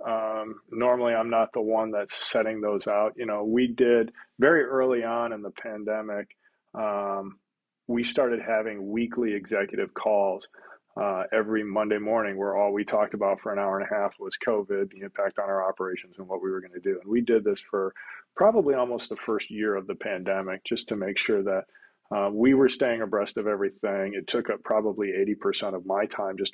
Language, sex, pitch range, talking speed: English, male, 105-125 Hz, 205 wpm